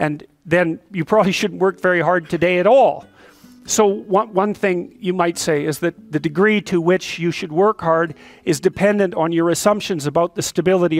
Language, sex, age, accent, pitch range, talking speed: English, male, 50-69, American, 165-200 Hz, 190 wpm